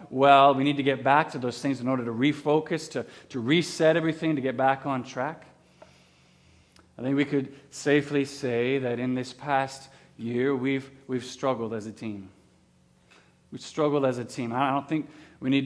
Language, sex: English, male